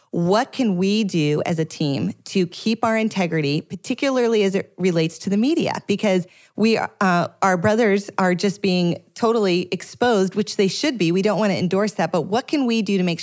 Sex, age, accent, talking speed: female, 30-49, American, 205 wpm